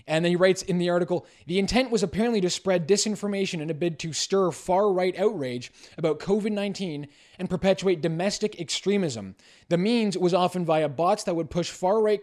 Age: 20-39